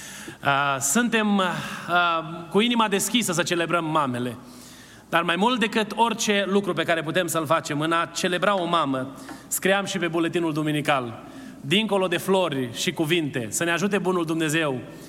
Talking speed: 150 wpm